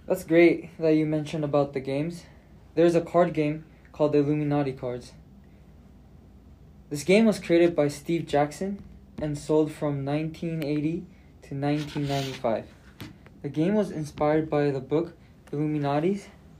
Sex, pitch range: male, 140-165 Hz